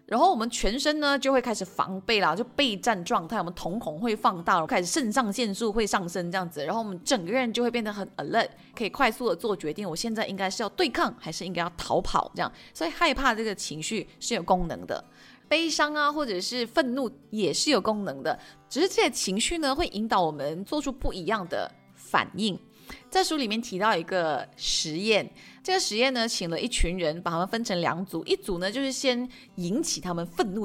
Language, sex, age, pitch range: Chinese, female, 20-39, 180-260 Hz